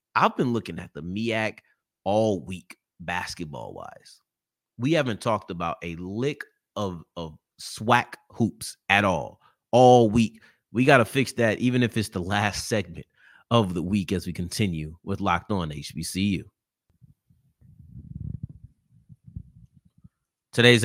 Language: English